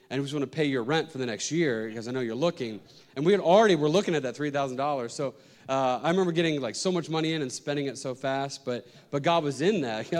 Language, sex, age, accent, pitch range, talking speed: English, male, 30-49, American, 140-200 Hz, 280 wpm